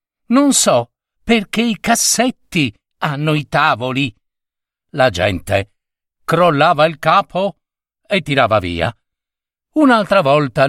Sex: male